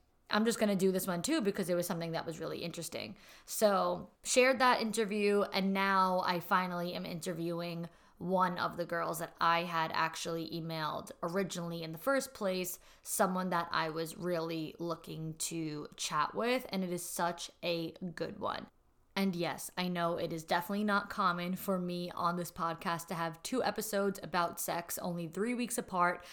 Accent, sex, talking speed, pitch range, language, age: American, female, 180 wpm, 170-210 Hz, English, 20-39